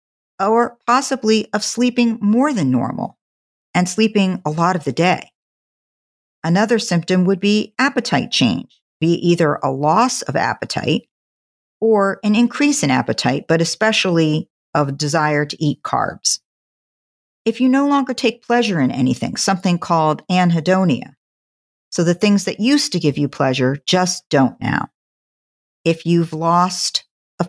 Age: 50-69